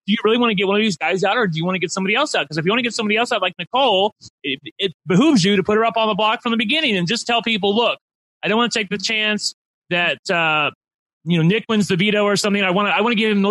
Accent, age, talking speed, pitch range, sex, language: American, 30-49, 340 wpm, 175-220 Hz, male, English